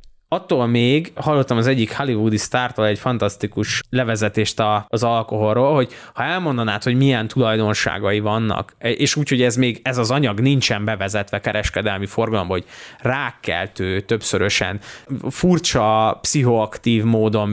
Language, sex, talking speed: Hungarian, male, 125 wpm